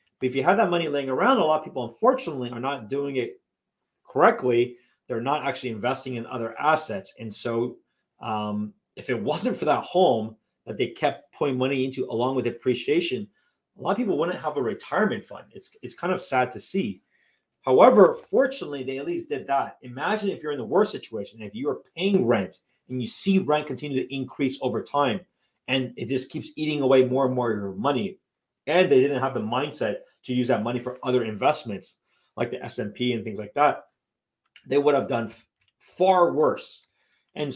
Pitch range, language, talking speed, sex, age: 115-150 Hz, English, 205 wpm, male, 30-49